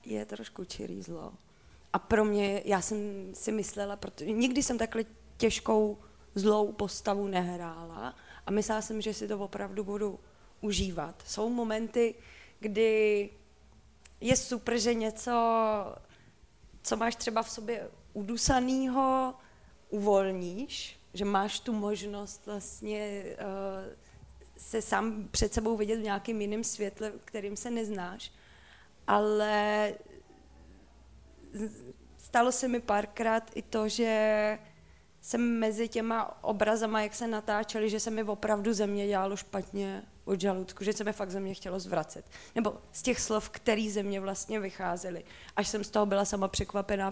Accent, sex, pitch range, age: native, female, 200-225 Hz, 20-39